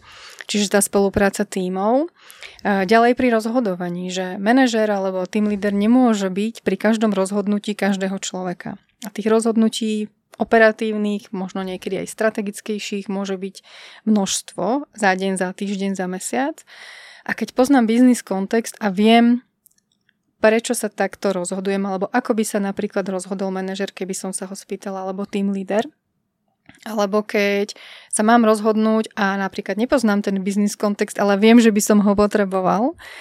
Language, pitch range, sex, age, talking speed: Slovak, 195-225 Hz, female, 20-39, 145 wpm